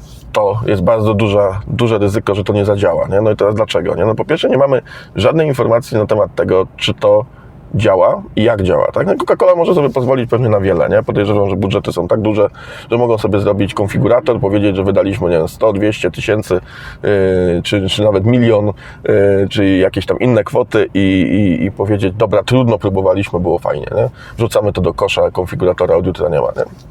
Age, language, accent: 20-39, Polish, native